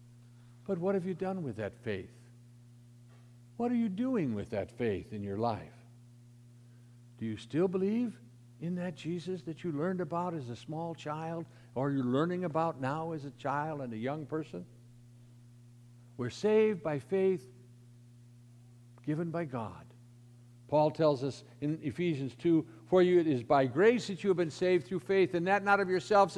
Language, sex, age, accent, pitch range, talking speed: English, male, 60-79, American, 120-170 Hz, 175 wpm